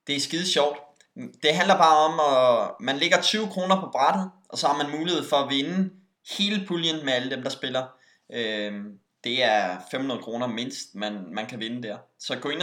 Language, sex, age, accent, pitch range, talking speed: Danish, male, 20-39, native, 125-175 Hz, 200 wpm